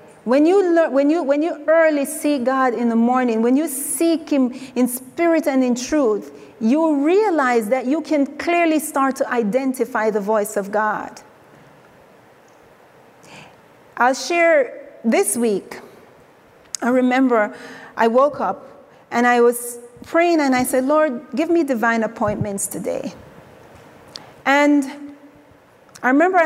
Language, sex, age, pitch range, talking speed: English, female, 40-59, 230-285 Hz, 135 wpm